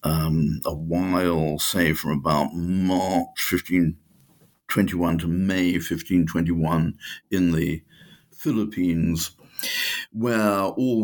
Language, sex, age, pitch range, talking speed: English, male, 60-79, 75-90 Hz, 80 wpm